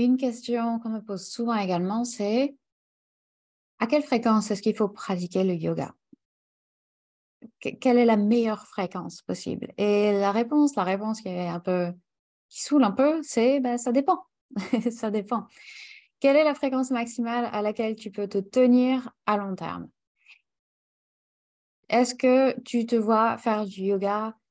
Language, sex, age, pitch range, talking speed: French, female, 20-39, 200-240 Hz, 155 wpm